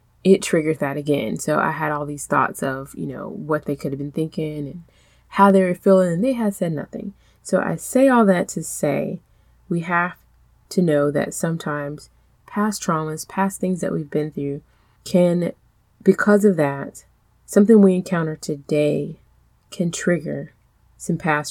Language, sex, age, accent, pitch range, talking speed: English, female, 20-39, American, 150-190 Hz, 175 wpm